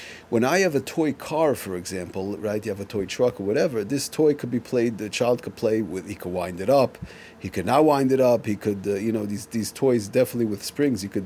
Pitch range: 110-150 Hz